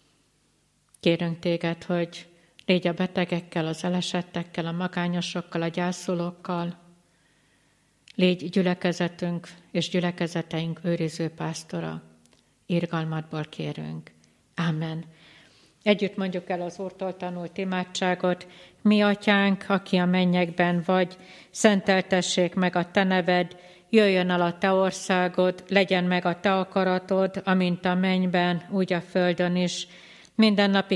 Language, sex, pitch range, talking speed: Hungarian, female, 175-190 Hz, 110 wpm